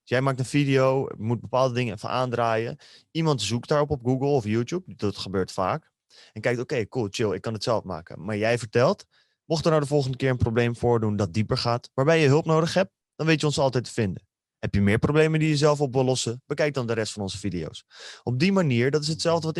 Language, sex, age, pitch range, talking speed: Dutch, male, 20-39, 115-150 Hz, 250 wpm